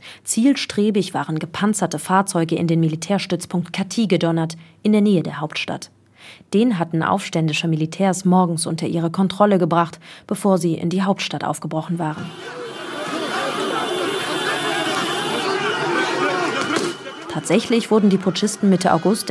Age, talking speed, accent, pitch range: 30-49, 110 wpm, German, 160-205 Hz